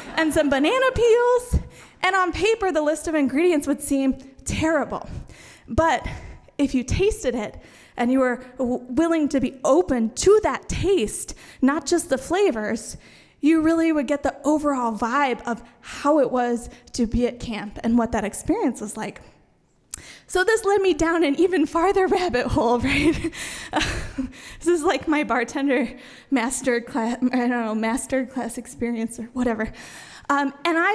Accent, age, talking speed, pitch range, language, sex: American, 10-29, 160 wpm, 255-340 Hz, English, female